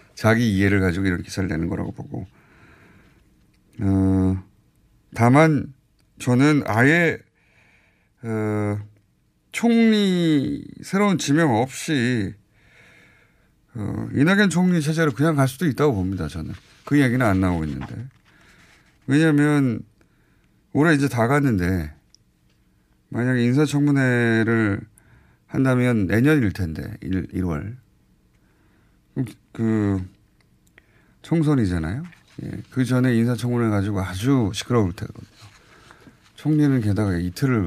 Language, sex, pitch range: Korean, male, 95-135 Hz